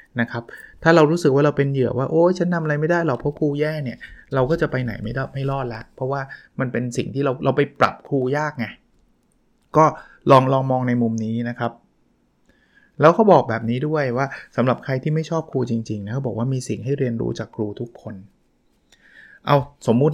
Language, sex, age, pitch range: Thai, male, 20-39, 115-140 Hz